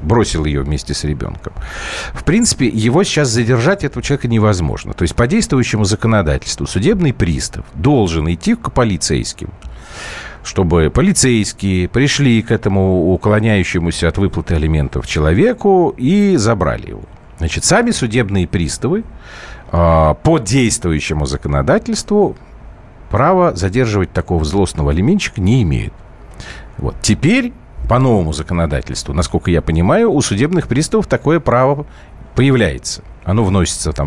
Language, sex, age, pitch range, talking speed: Russian, male, 50-69, 85-130 Hz, 120 wpm